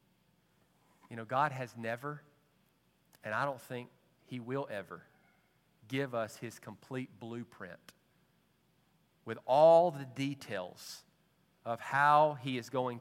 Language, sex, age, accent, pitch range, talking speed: English, male, 40-59, American, 110-140 Hz, 120 wpm